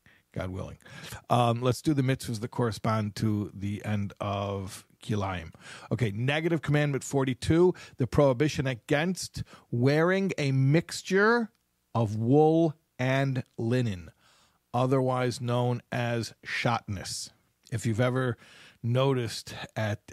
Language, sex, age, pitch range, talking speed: English, male, 50-69, 105-130 Hz, 110 wpm